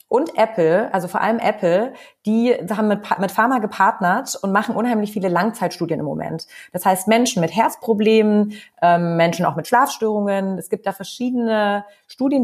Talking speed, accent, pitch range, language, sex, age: 170 wpm, German, 170-215 Hz, German, female, 30-49